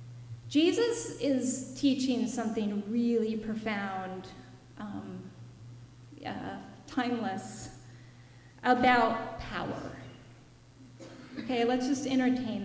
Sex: female